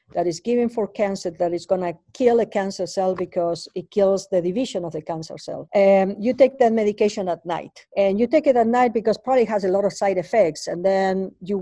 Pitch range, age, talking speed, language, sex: 180-225 Hz, 50-69, 240 wpm, English, female